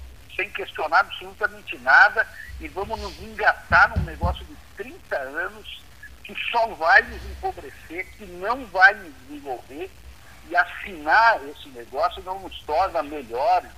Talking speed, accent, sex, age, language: 130 wpm, Brazilian, male, 60-79, Portuguese